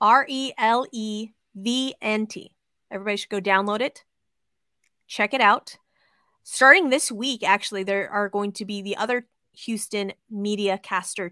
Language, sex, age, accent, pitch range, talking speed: English, female, 20-39, American, 195-235 Hz, 120 wpm